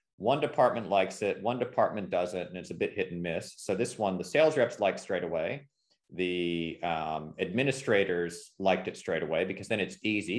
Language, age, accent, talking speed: English, 40-59, American, 195 wpm